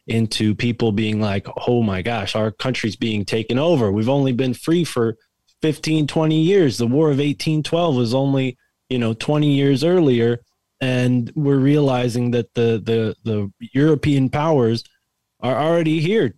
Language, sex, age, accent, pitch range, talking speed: English, male, 20-39, American, 110-135 Hz, 160 wpm